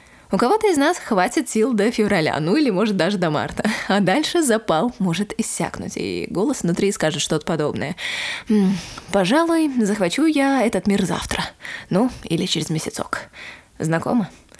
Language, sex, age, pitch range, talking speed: Russian, female, 20-39, 170-235 Hz, 150 wpm